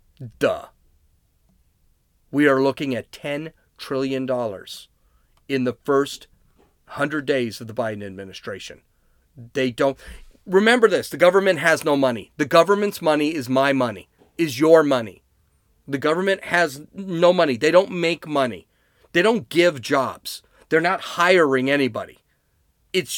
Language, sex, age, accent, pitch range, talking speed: English, male, 40-59, American, 130-180 Hz, 135 wpm